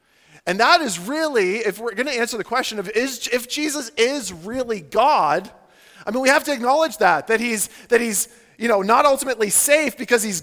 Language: English